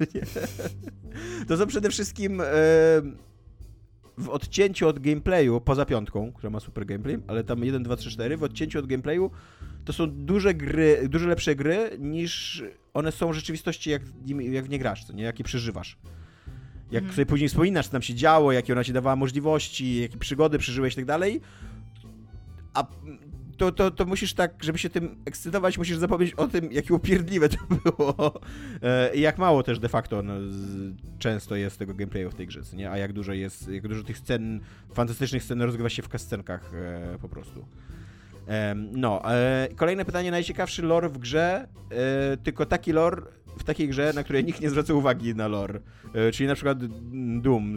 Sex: male